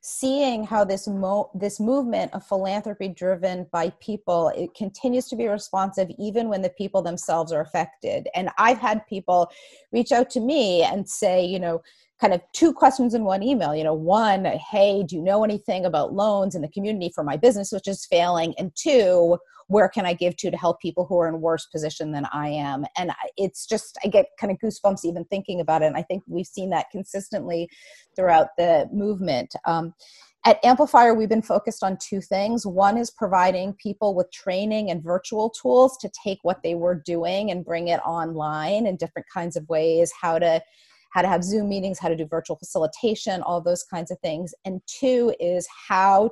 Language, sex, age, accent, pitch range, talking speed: English, female, 30-49, American, 170-205 Hz, 200 wpm